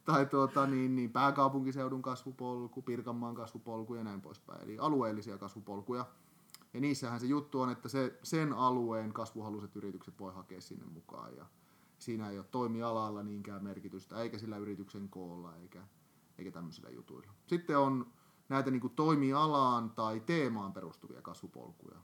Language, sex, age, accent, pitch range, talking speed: Finnish, male, 30-49, native, 105-130 Hz, 145 wpm